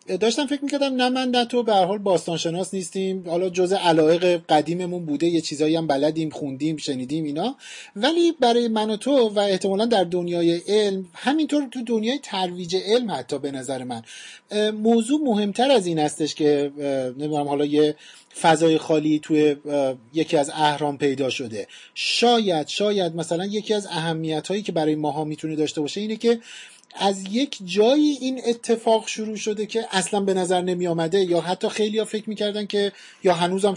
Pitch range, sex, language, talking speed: 155-215 Hz, male, Persian, 165 wpm